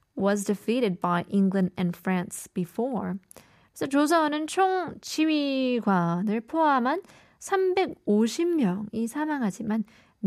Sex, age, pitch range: female, 20-39, 190-255 Hz